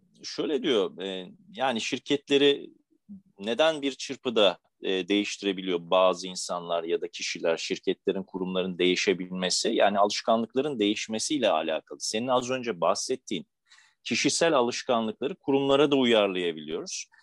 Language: Turkish